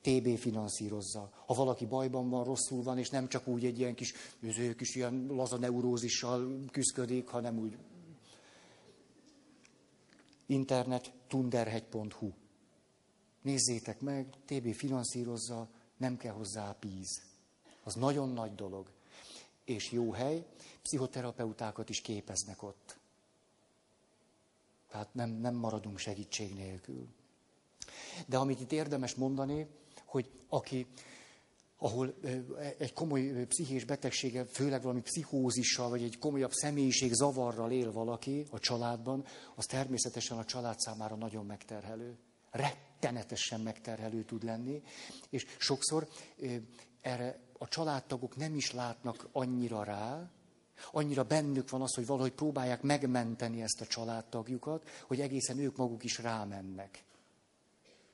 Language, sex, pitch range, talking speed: Hungarian, male, 115-135 Hz, 115 wpm